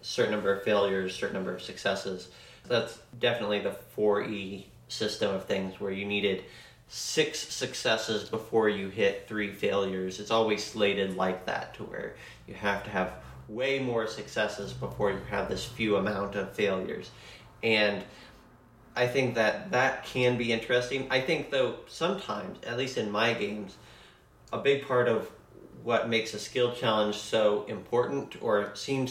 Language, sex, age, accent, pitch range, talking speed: English, male, 30-49, American, 105-120 Hz, 160 wpm